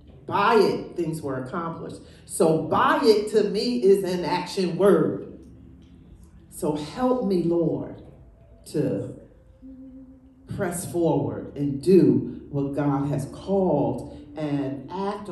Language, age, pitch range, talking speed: English, 40-59, 140-230 Hz, 115 wpm